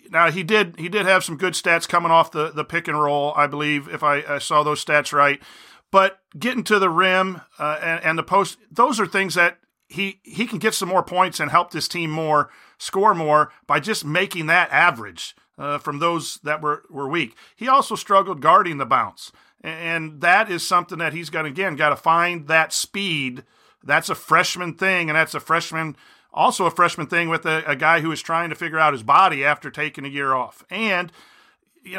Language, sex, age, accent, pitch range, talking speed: English, male, 40-59, American, 150-180 Hz, 215 wpm